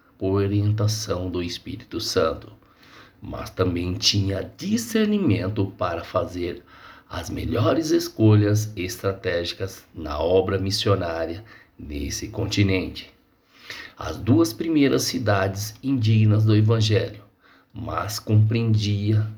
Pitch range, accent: 95-115 Hz, Brazilian